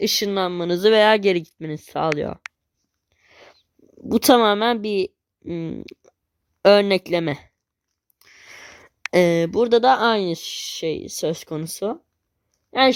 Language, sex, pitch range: Turkish, female, 165-225 Hz